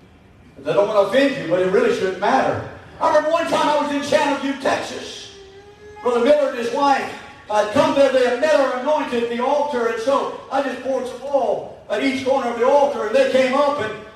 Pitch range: 255-315 Hz